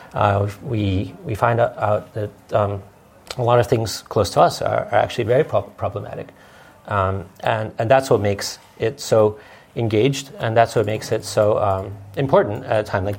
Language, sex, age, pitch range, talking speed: English, male, 40-59, 100-130 Hz, 200 wpm